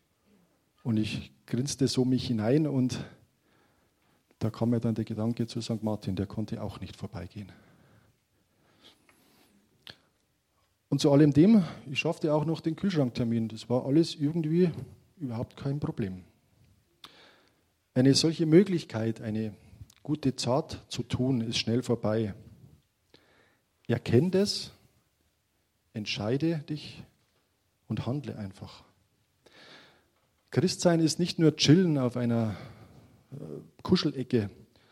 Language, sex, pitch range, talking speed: German, male, 110-135 Hz, 110 wpm